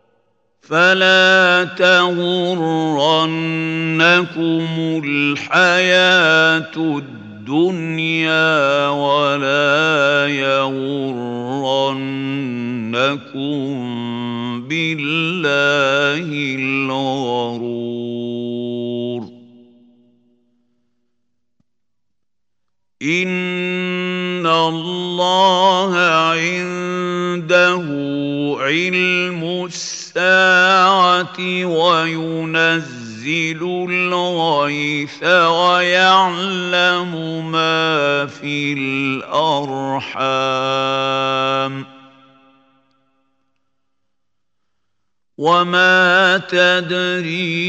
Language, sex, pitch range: Arabic, male, 135-180 Hz